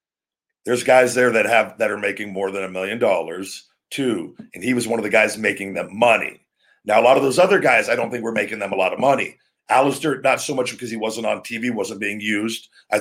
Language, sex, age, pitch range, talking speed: English, male, 50-69, 105-135 Hz, 250 wpm